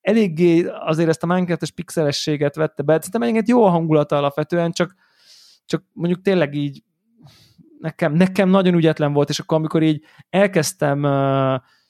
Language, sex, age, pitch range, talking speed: Hungarian, male, 20-39, 145-185 Hz, 145 wpm